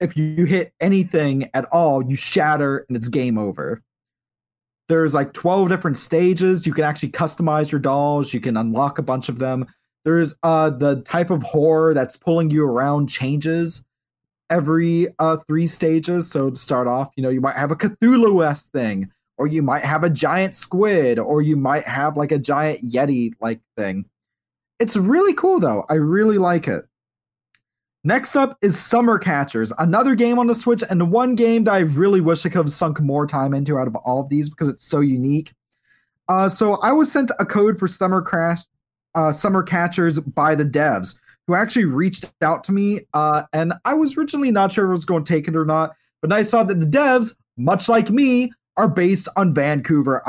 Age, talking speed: 30-49, 195 wpm